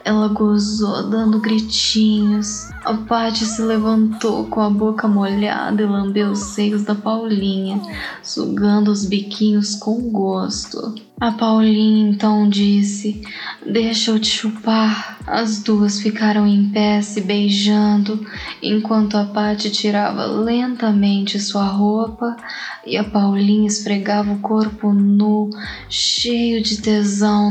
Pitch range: 205-215 Hz